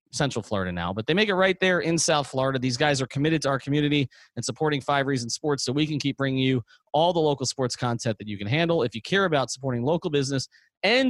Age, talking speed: 30-49, 255 wpm